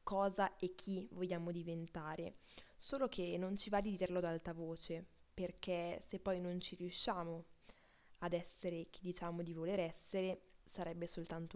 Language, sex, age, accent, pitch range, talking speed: Italian, female, 20-39, native, 170-195 Hz, 155 wpm